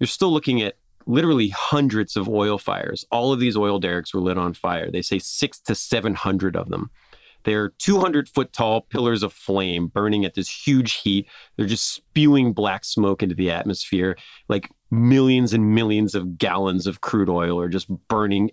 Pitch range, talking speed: 100-120 Hz, 185 wpm